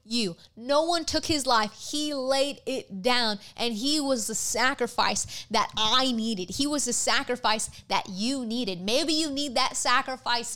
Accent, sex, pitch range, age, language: American, female, 230-280 Hz, 20-39, Japanese